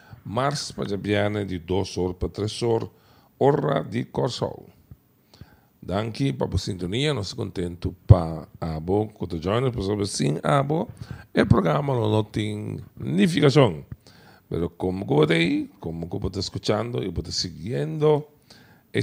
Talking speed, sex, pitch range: 115 wpm, male, 90-125 Hz